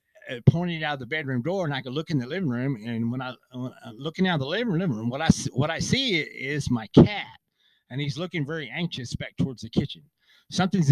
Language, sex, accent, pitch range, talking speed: English, male, American, 120-160 Hz, 235 wpm